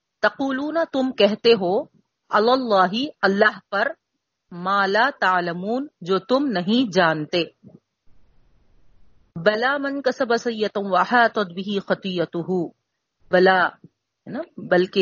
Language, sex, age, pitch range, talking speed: Urdu, female, 40-59, 185-245 Hz, 95 wpm